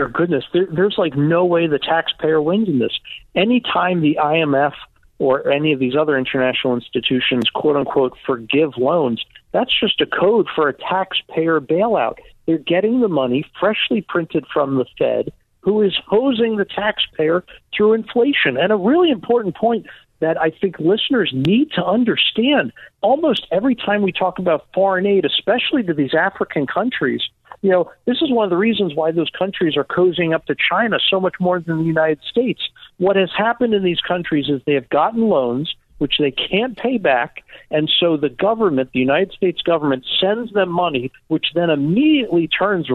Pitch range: 155-205 Hz